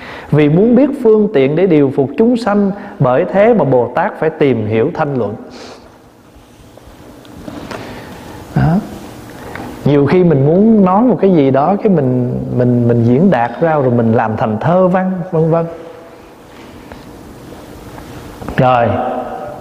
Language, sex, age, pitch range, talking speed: Vietnamese, male, 20-39, 120-165 Hz, 140 wpm